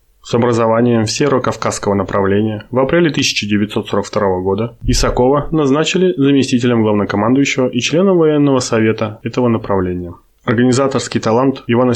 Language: Russian